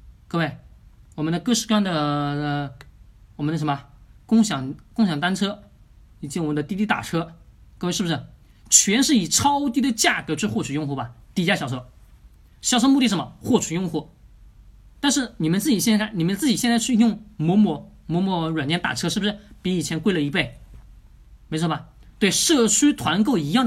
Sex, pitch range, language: male, 150-235 Hz, Chinese